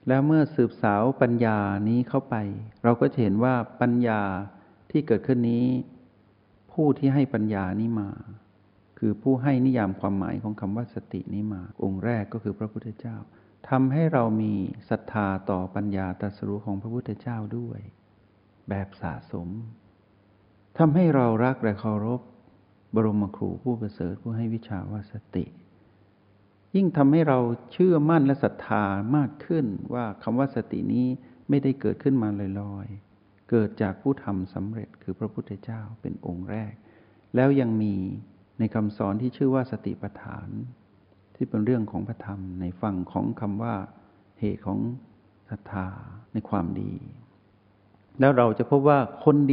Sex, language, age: male, Thai, 60-79